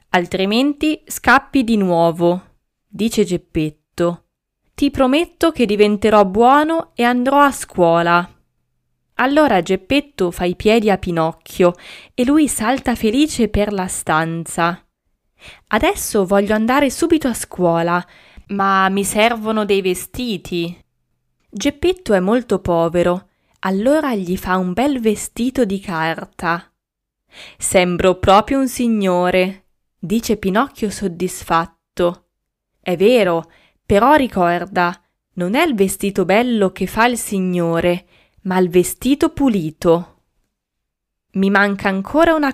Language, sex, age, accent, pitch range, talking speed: Italian, female, 20-39, native, 175-250 Hz, 115 wpm